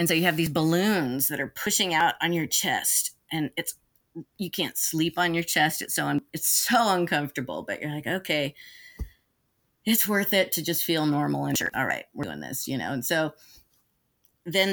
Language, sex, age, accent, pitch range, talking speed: English, female, 30-49, American, 145-180 Hz, 205 wpm